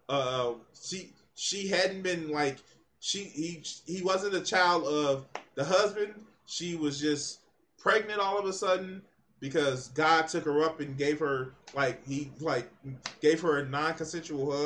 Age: 20-39